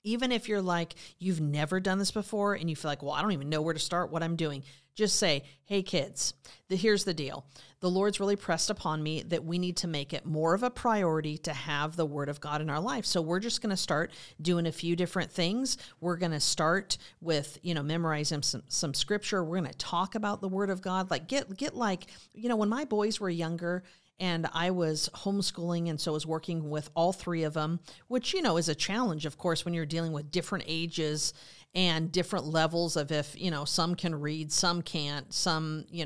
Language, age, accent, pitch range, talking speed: English, 40-59, American, 150-185 Hz, 235 wpm